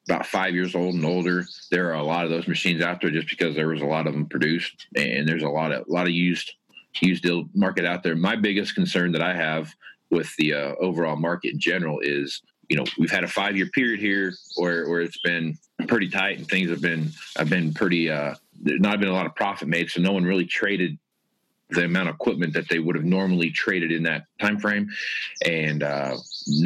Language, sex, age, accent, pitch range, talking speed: English, male, 40-59, American, 75-90 Hz, 235 wpm